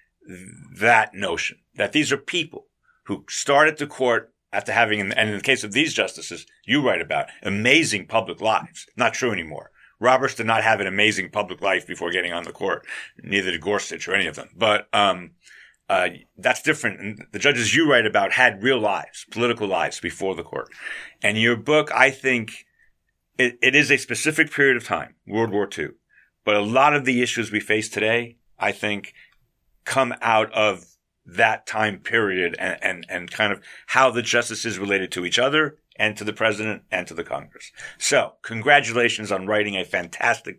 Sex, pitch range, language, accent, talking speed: male, 105-130 Hz, English, American, 190 wpm